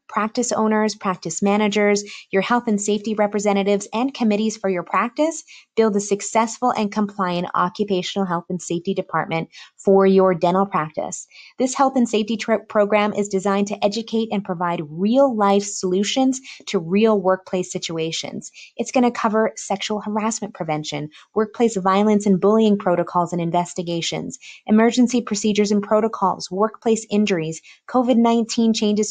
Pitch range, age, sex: 185-220 Hz, 20-39, female